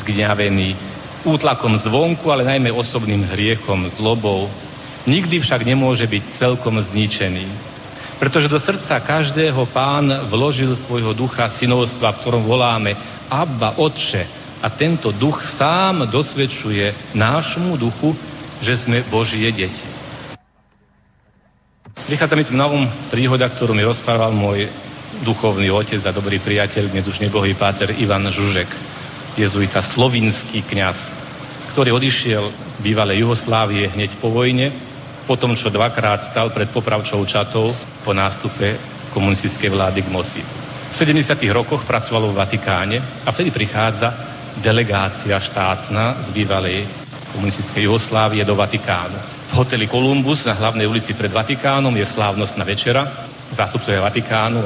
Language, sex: Slovak, male